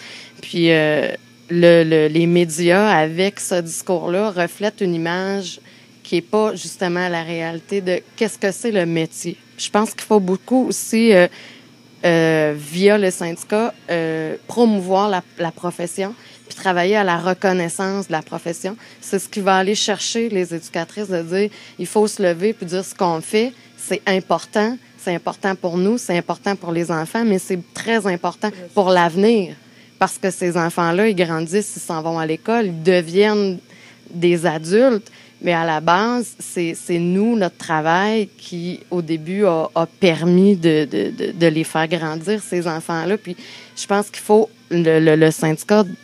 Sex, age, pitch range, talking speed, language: female, 20-39, 170-205 Hz, 170 wpm, French